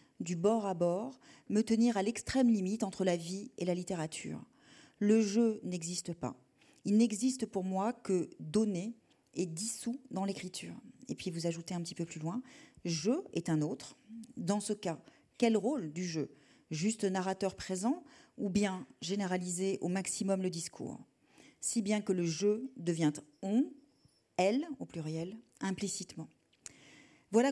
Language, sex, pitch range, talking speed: French, female, 180-230 Hz, 155 wpm